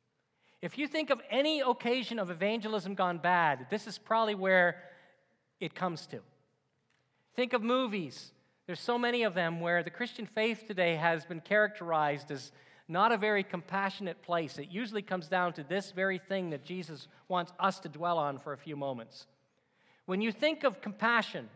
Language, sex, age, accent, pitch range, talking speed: English, male, 40-59, American, 170-230 Hz, 175 wpm